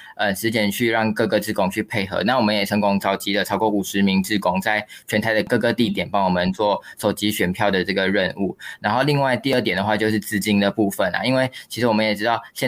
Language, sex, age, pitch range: Chinese, male, 20-39, 100-120 Hz